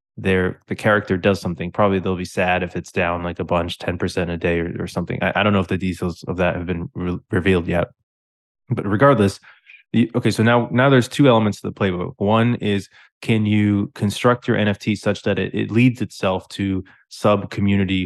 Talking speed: 215 wpm